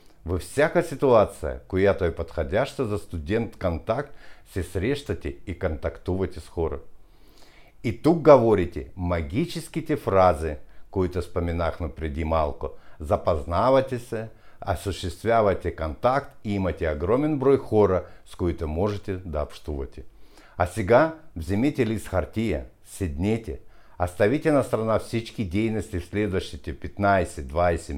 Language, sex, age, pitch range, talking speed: Bulgarian, male, 60-79, 85-120 Hz, 110 wpm